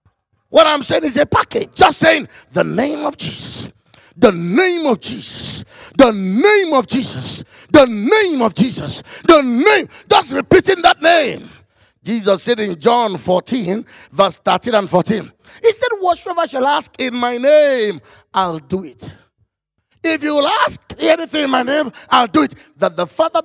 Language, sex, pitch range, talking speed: English, male, 230-310 Hz, 165 wpm